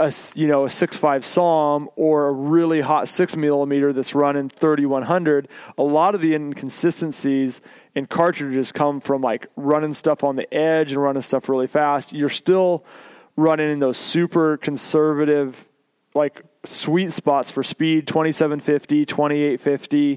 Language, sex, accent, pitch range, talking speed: English, male, American, 140-160 Hz, 150 wpm